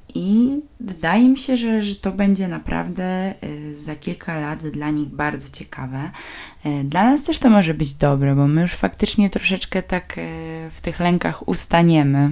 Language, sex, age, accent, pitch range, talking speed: Polish, female, 20-39, native, 155-215 Hz, 160 wpm